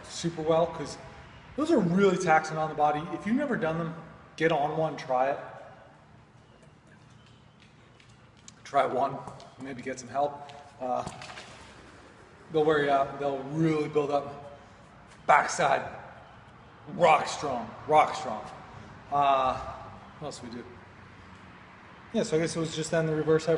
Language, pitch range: English, 130-155 Hz